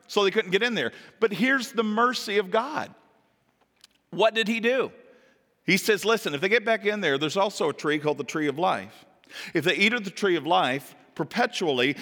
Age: 40-59